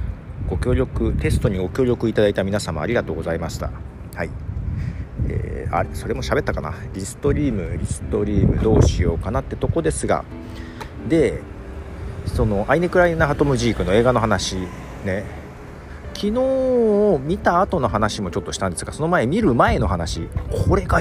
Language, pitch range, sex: Japanese, 85-120 Hz, male